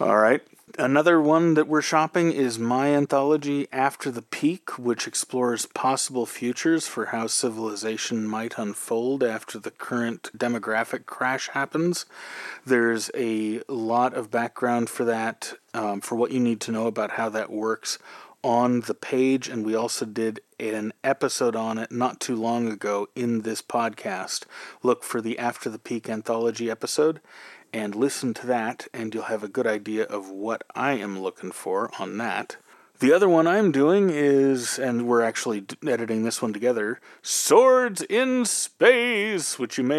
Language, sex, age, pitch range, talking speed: English, male, 30-49, 115-155 Hz, 165 wpm